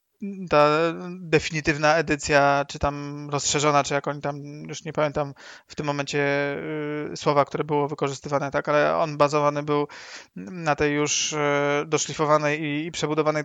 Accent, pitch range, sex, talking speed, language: native, 145-170 Hz, male, 150 wpm, Polish